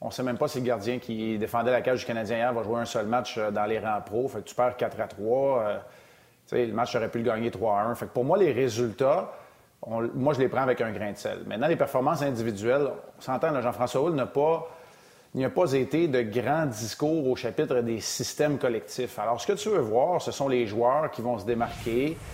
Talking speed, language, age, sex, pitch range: 245 wpm, French, 30-49, male, 120-130 Hz